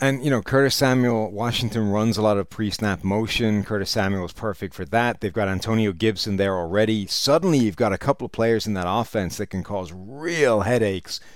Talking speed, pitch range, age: 205 wpm, 95-120 Hz, 30-49